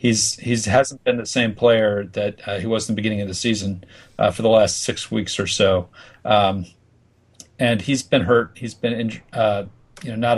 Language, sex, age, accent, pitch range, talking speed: English, male, 40-59, American, 100-120 Hz, 215 wpm